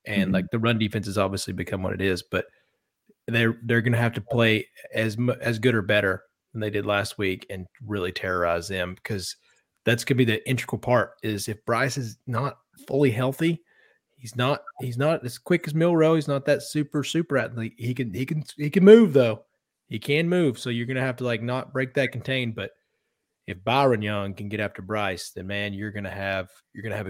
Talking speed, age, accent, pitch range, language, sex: 215 wpm, 30-49, American, 105-135 Hz, English, male